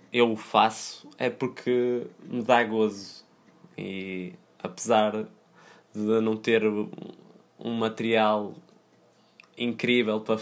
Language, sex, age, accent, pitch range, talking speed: Portuguese, male, 20-39, Brazilian, 105-115 Hz, 100 wpm